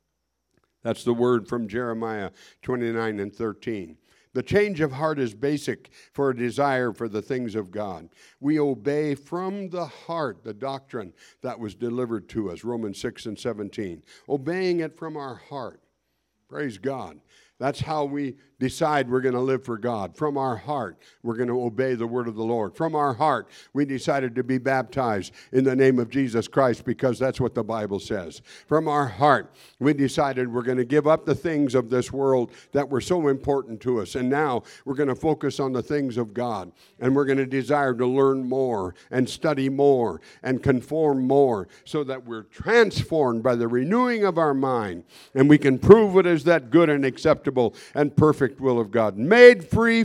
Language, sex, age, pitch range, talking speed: English, male, 60-79, 120-150 Hz, 190 wpm